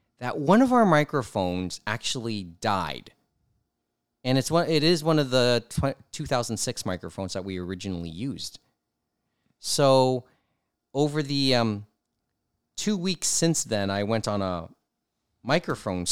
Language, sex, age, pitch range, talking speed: English, male, 30-49, 95-120 Hz, 125 wpm